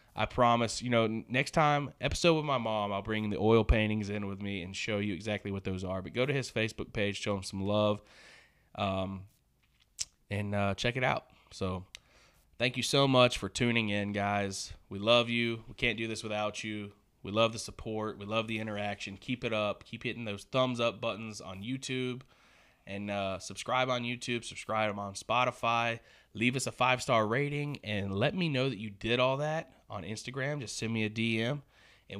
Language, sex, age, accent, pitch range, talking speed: English, male, 20-39, American, 100-120 Hz, 200 wpm